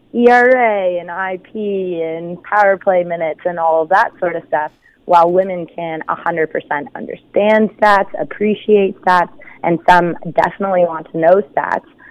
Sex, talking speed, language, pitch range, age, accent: female, 145 wpm, English, 165-195 Hz, 20-39, American